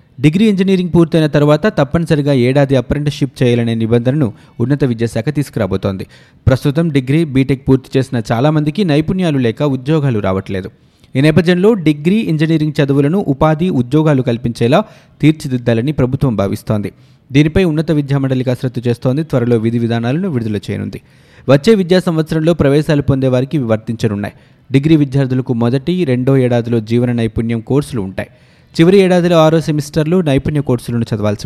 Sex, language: male, Telugu